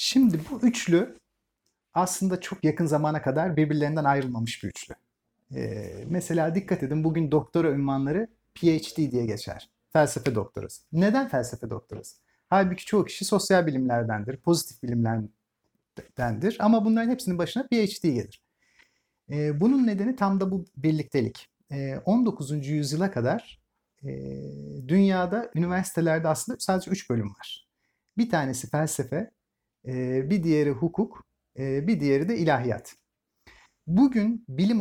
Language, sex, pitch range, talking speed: Turkish, male, 130-190 Hz, 120 wpm